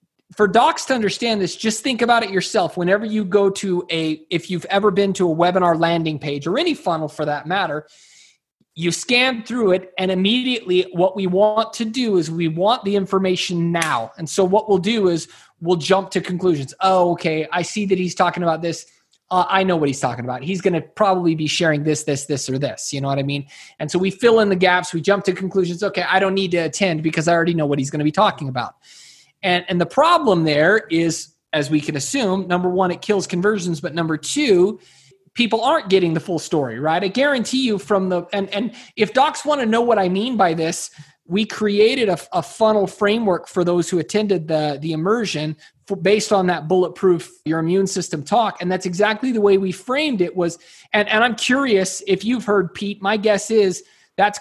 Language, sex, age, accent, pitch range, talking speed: English, male, 20-39, American, 170-205 Hz, 225 wpm